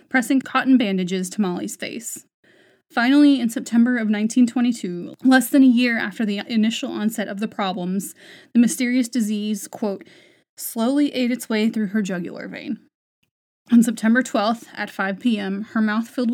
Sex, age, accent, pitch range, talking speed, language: female, 20-39, American, 195-240 Hz, 160 wpm, English